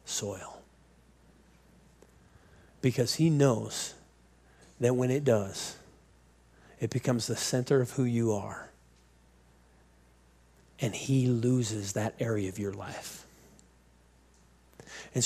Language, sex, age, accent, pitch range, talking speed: English, male, 40-59, American, 100-135 Hz, 100 wpm